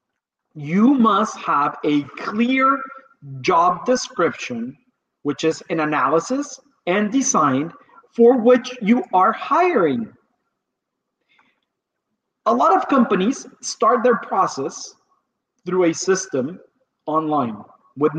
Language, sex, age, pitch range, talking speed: English, male, 40-59, 160-235 Hz, 100 wpm